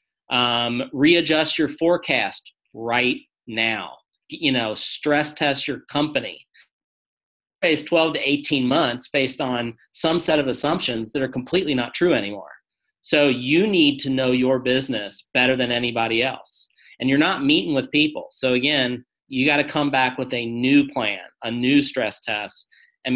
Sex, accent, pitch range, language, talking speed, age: male, American, 120-145 Hz, English, 165 wpm, 40-59